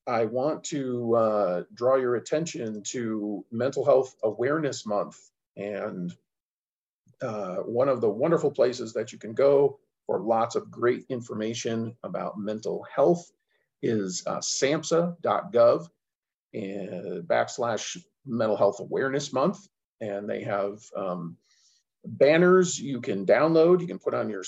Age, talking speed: 40-59, 130 wpm